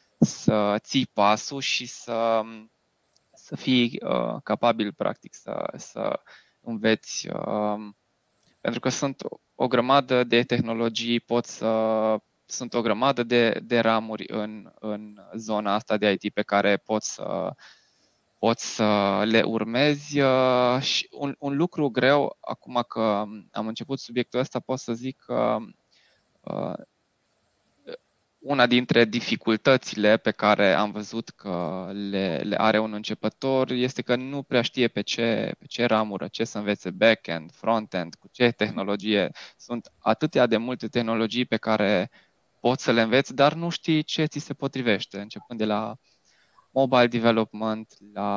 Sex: male